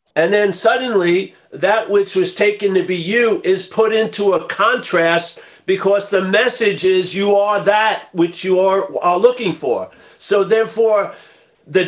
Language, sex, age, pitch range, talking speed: English, male, 50-69, 185-240 Hz, 155 wpm